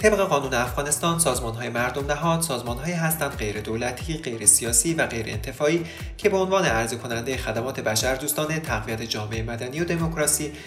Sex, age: male, 30-49